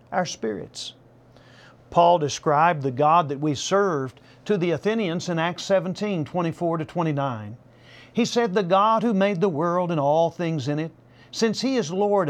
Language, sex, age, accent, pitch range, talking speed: English, male, 50-69, American, 130-185 Hz, 160 wpm